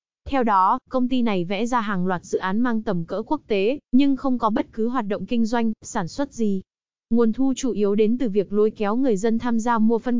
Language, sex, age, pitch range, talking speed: Vietnamese, female, 20-39, 200-245 Hz, 255 wpm